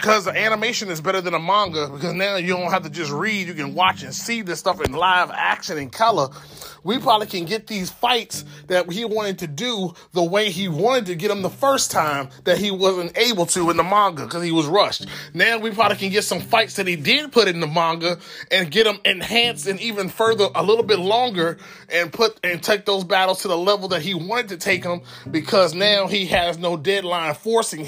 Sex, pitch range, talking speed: male, 170-210 Hz, 230 wpm